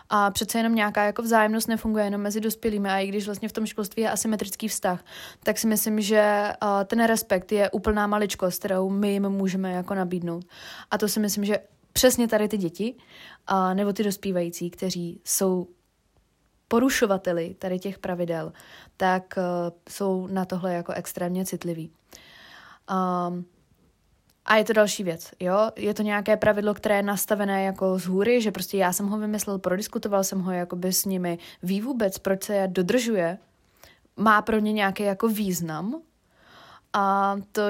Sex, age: female, 20-39